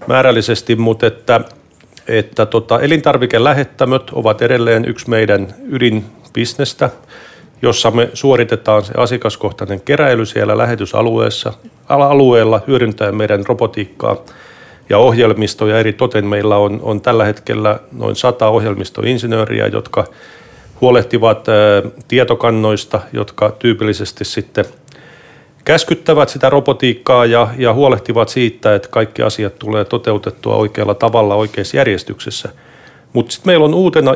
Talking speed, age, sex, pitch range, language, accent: 105 wpm, 40-59, male, 110-130 Hz, Finnish, native